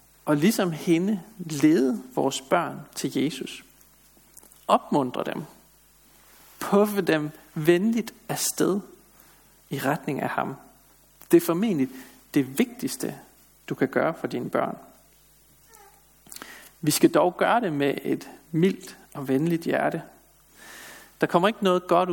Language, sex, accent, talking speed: Danish, male, native, 120 wpm